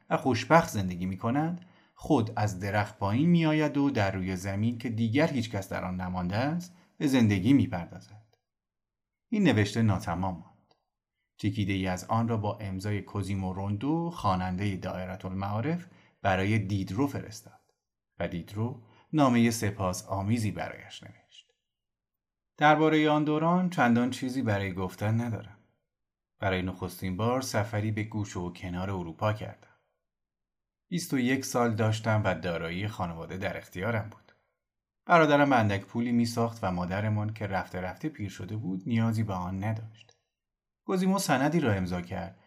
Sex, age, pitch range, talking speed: male, 30-49, 95-125 Hz, 140 wpm